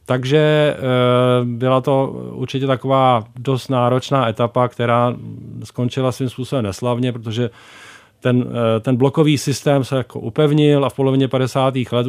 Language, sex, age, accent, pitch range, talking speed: Czech, male, 40-59, native, 110-125 Hz, 130 wpm